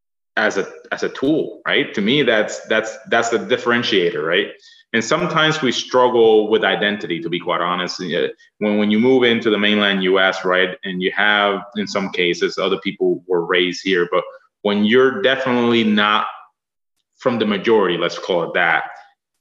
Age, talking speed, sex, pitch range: 20-39, 175 wpm, male, 100-155 Hz